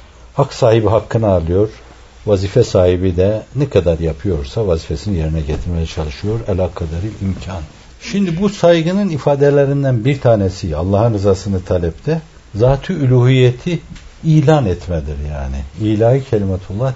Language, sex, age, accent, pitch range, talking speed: Turkish, male, 60-79, native, 90-135 Hz, 115 wpm